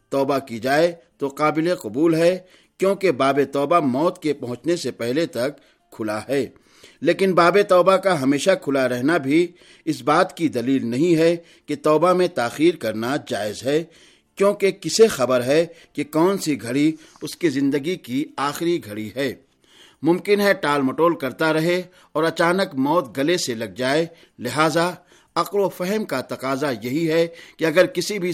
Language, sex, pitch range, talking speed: Urdu, male, 135-175 Hz, 165 wpm